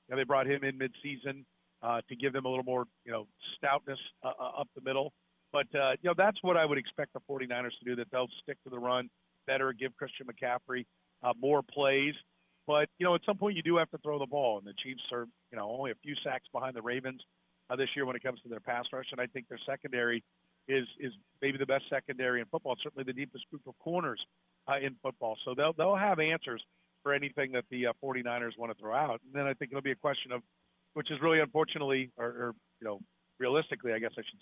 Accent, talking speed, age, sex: American, 250 wpm, 50-69, male